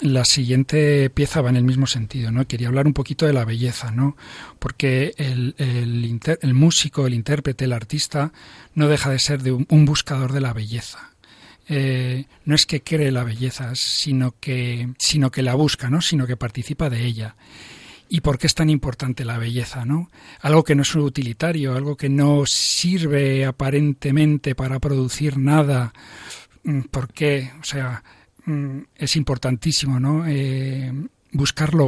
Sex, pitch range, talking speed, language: male, 130-150 Hz, 160 wpm, Spanish